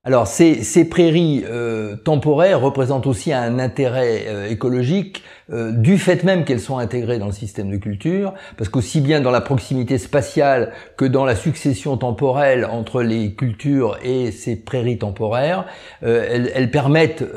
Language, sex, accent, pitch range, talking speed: French, male, French, 110-140 Hz, 160 wpm